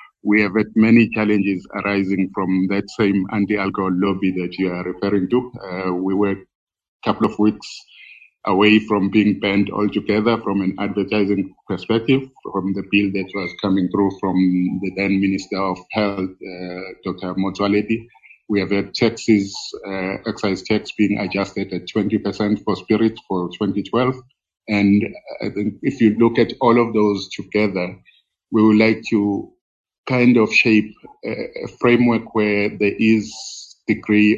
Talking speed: 155 wpm